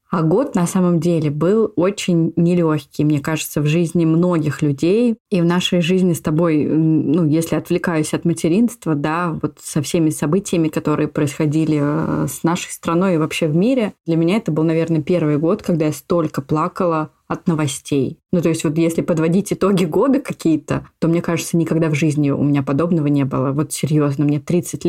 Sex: female